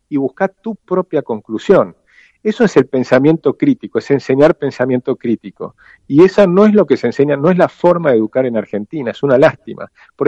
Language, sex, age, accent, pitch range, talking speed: Spanish, male, 50-69, Argentinian, 130-190 Hz, 200 wpm